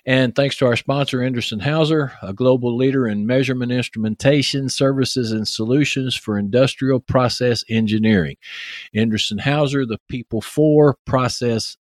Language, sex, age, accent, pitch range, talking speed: English, male, 50-69, American, 110-135 Hz, 130 wpm